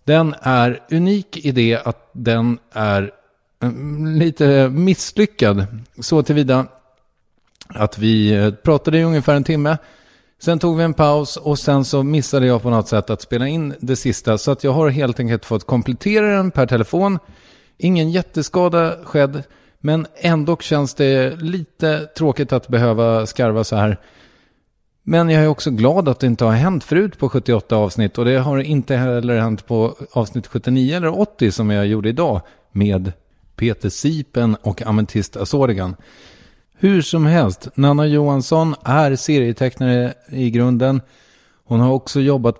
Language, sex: English, male